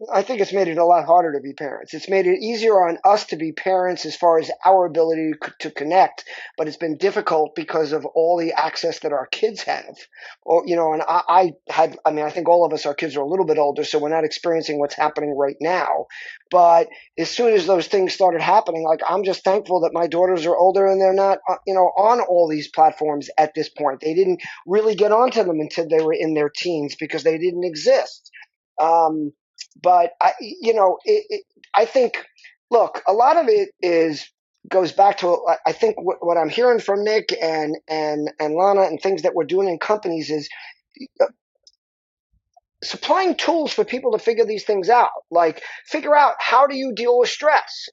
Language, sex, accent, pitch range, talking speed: English, male, American, 160-225 Hz, 215 wpm